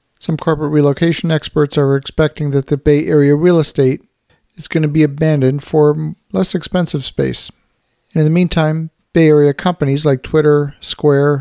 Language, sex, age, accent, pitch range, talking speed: English, male, 50-69, American, 140-165 Hz, 160 wpm